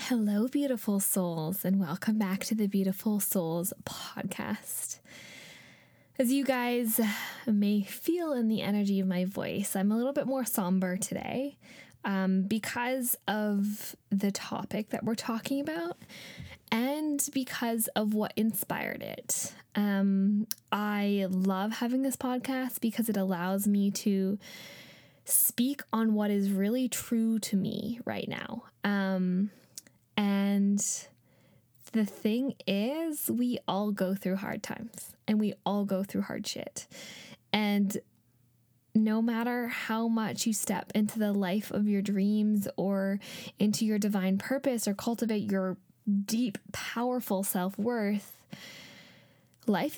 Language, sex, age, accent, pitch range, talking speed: English, female, 10-29, American, 195-235 Hz, 130 wpm